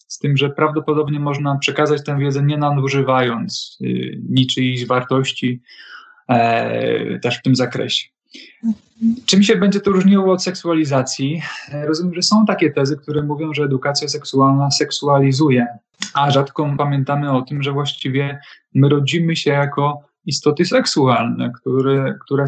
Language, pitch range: Polish, 135-155 Hz